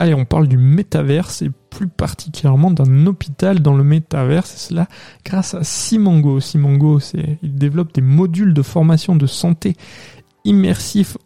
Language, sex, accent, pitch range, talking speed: French, male, French, 150-180 Hz, 150 wpm